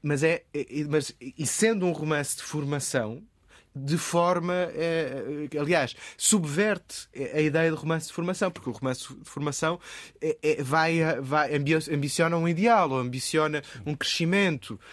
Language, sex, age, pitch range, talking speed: Portuguese, male, 20-39, 115-145 Hz, 145 wpm